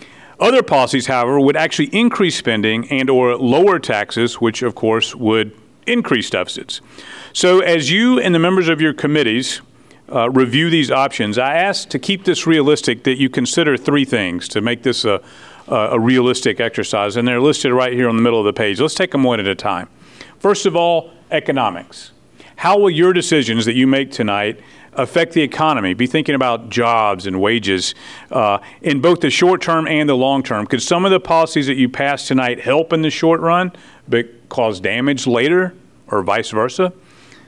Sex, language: male, English